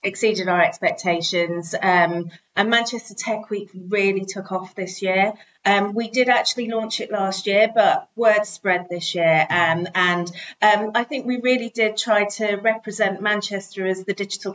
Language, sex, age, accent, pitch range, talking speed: English, female, 30-49, British, 180-215 Hz, 170 wpm